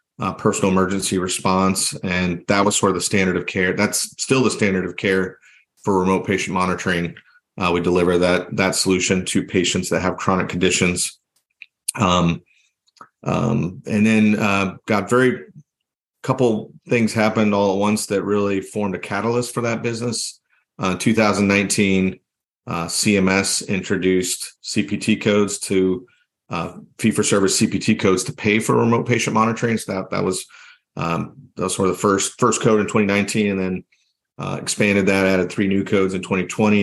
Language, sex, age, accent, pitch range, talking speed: English, male, 40-59, American, 90-105 Hz, 160 wpm